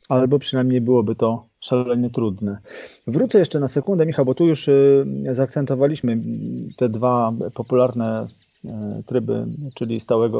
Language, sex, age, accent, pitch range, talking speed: Polish, male, 30-49, native, 110-140 Hz, 120 wpm